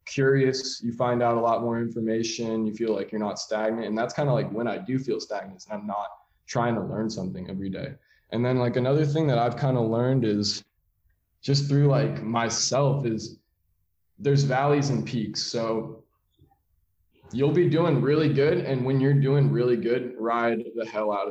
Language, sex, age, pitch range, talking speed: English, male, 20-39, 110-135 Hz, 195 wpm